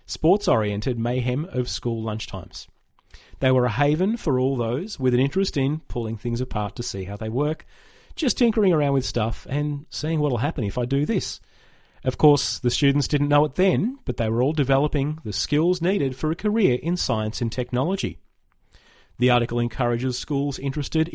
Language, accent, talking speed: English, Australian, 185 wpm